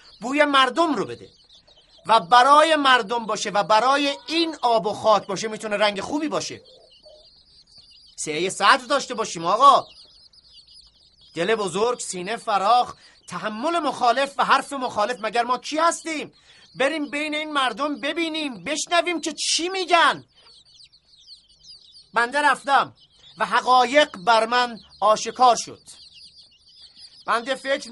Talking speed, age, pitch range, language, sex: 120 wpm, 30-49, 220-285 Hz, Persian, male